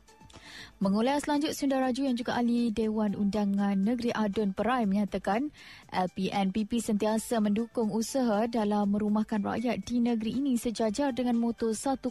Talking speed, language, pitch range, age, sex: 135 wpm, Malay, 210-250 Hz, 20-39, female